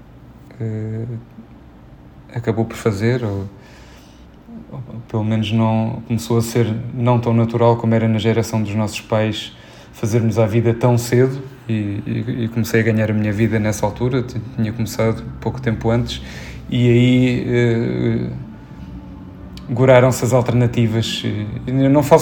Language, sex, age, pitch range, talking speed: Portuguese, male, 20-39, 110-125 Hz, 145 wpm